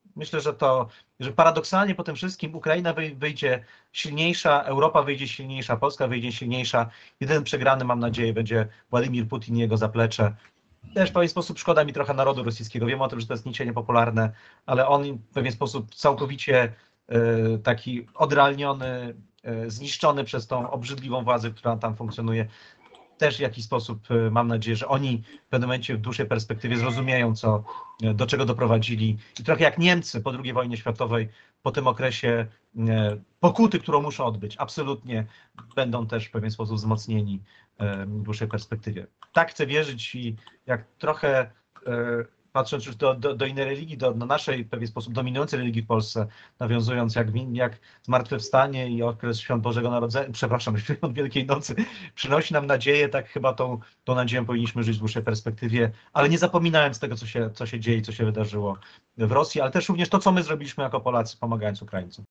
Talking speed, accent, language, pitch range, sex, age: 170 wpm, native, Polish, 115-140 Hz, male, 30-49